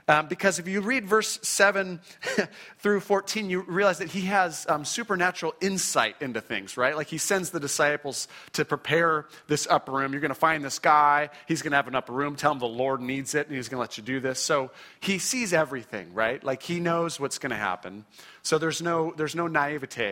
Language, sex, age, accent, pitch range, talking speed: English, male, 40-59, American, 135-185 Hz, 225 wpm